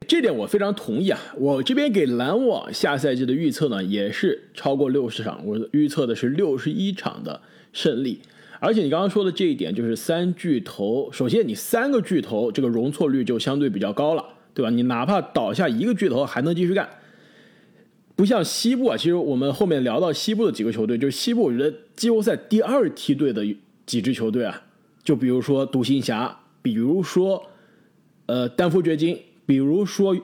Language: Chinese